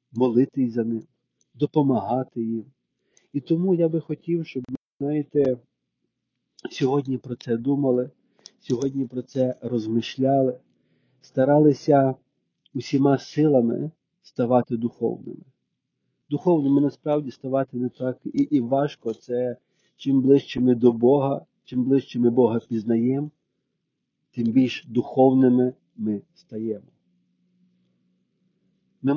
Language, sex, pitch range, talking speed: Ukrainian, male, 120-140 Hz, 100 wpm